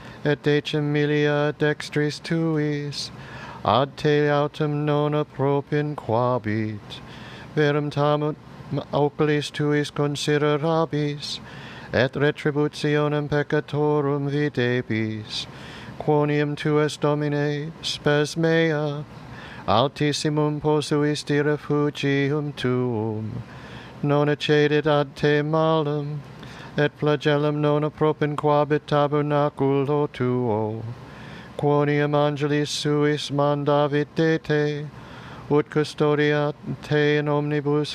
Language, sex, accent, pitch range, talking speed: English, male, American, 140-150 Hz, 80 wpm